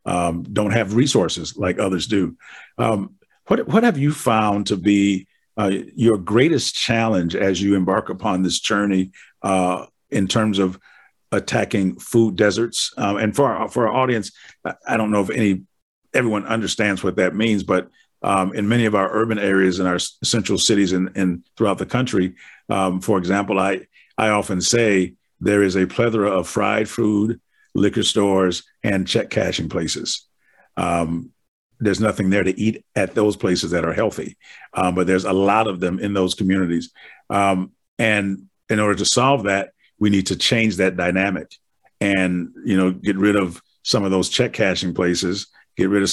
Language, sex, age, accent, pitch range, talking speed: English, male, 50-69, American, 95-110 Hz, 175 wpm